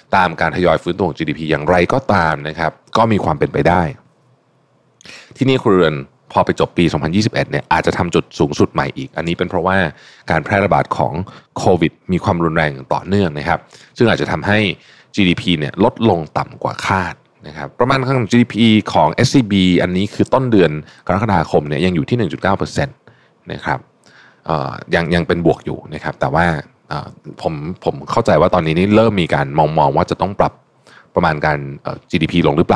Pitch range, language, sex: 80-105 Hz, Thai, male